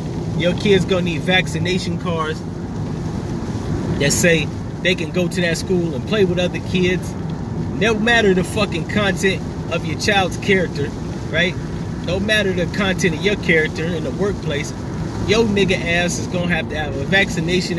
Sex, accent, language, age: male, American, English, 30-49